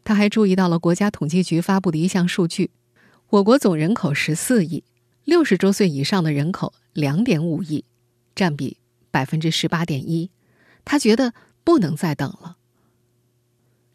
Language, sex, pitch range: Chinese, female, 145-205 Hz